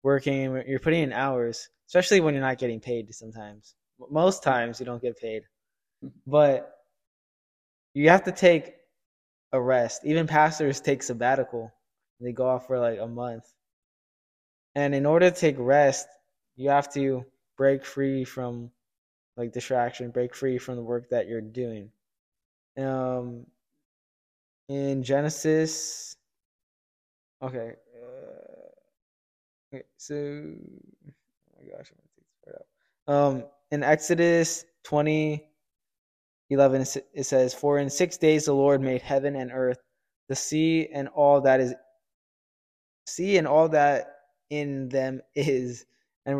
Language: English